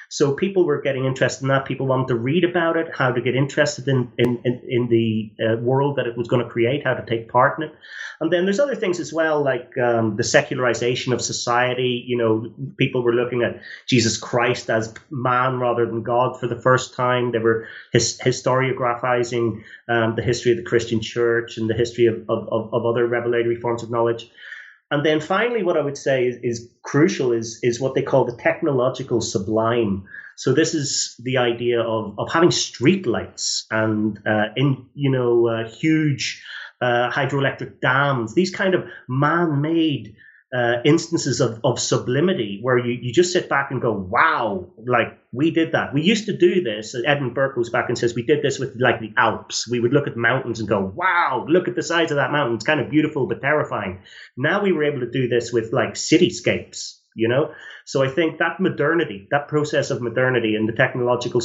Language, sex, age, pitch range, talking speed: English, male, 30-49, 115-145 Hz, 205 wpm